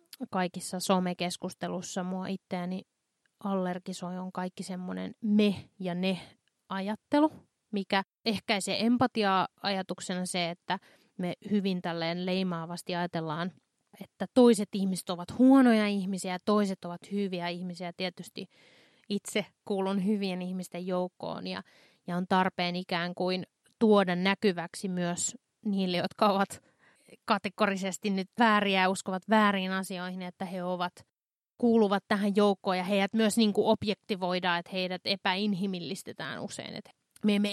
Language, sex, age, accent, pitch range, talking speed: Finnish, female, 30-49, native, 180-210 Hz, 120 wpm